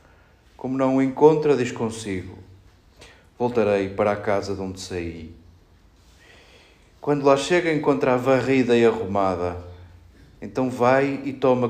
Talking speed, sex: 130 wpm, male